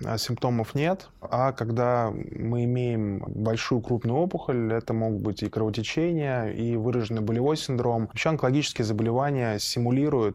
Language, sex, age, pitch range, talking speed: English, male, 20-39, 110-140 Hz, 130 wpm